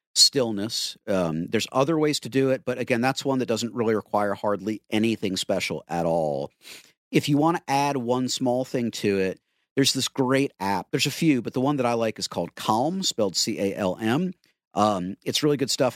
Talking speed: 215 wpm